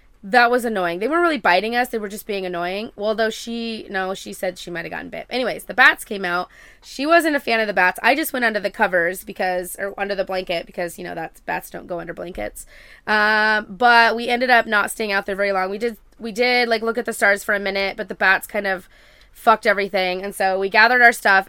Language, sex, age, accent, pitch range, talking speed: English, female, 20-39, American, 185-220 Hz, 255 wpm